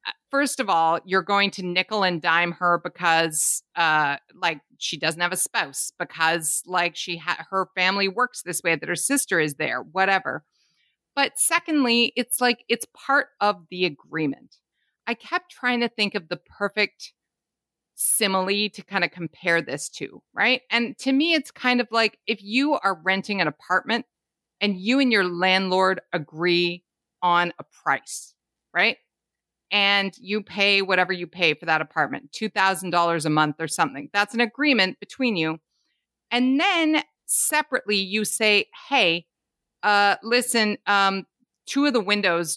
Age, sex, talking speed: 40-59, female, 160 wpm